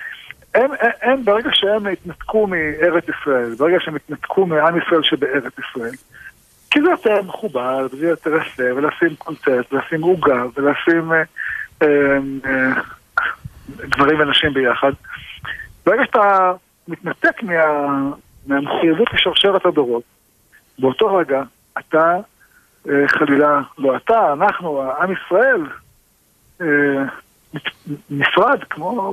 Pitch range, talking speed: 140-205 Hz, 105 wpm